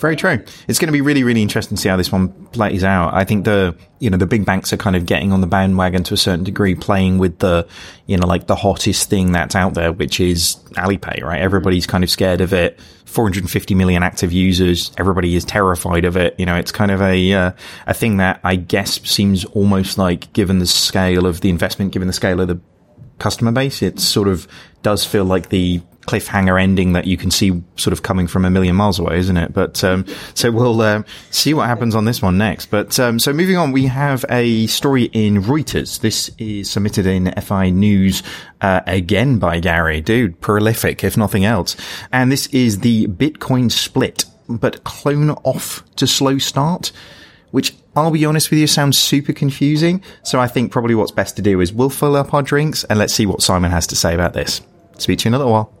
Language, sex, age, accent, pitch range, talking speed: English, male, 20-39, British, 90-120 Hz, 225 wpm